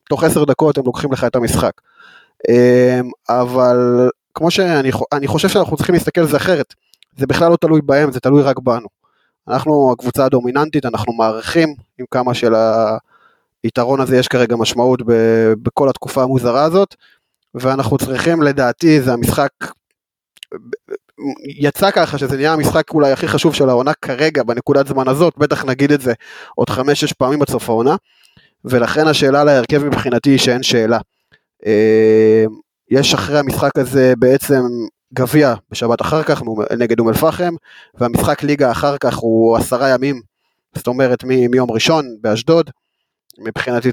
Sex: male